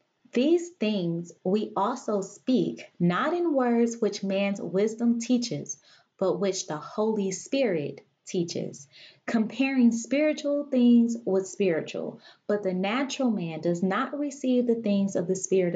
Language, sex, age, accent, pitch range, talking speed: English, female, 20-39, American, 185-240 Hz, 135 wpm